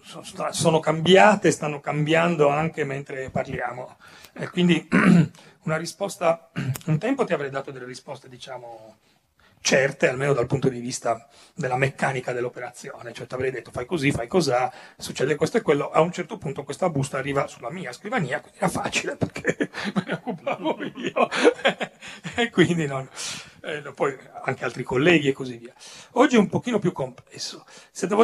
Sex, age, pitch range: male, 40-59, 125-165 Hz